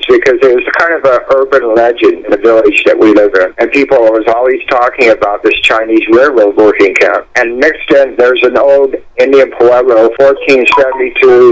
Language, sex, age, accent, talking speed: English, male, 50-69, American, 180 wpm